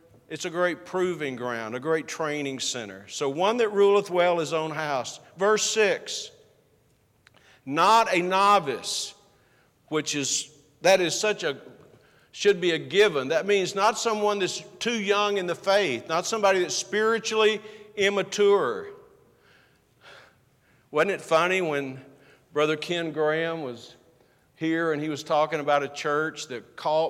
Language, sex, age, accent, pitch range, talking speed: English, male, 50-69, American, 140-185 Hz, 145 wpm